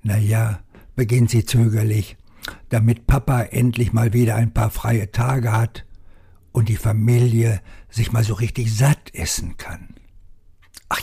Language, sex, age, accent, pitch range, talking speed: German, male, 60-79, German, 90-125 Hz, 135 wpm